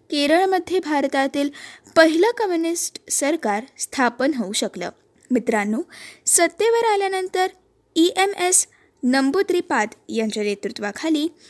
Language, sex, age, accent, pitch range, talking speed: Marathi, female, 20-39, native, 240-355 Hz, 90 wpm